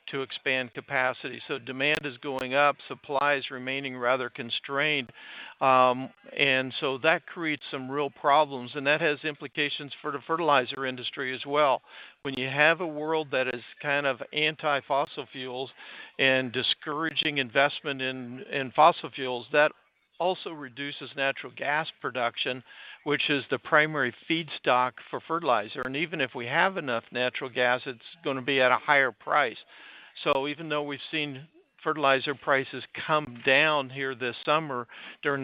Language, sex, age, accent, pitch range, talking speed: English, male, 60-79, American, 130-150 Hz, 155 wpm